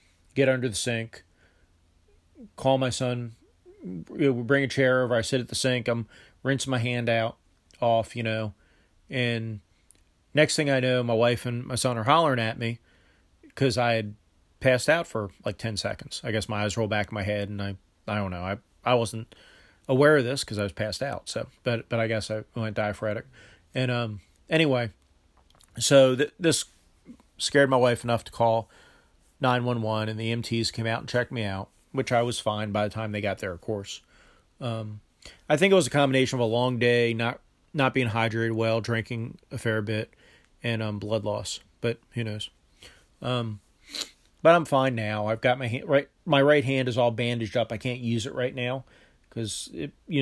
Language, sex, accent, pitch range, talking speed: English, male, American, 105-130 Hz, 200 wpm